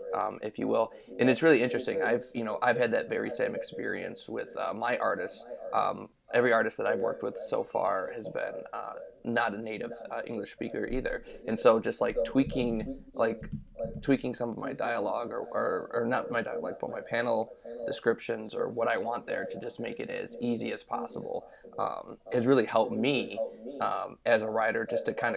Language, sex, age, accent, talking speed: English, male, 20-39, American, 200 wpm